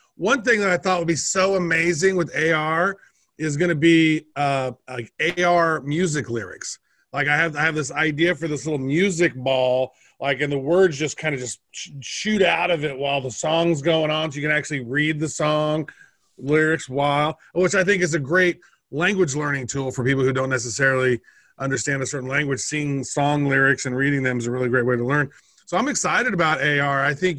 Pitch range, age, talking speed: 145-180 Hz, 30-49, 215 wpm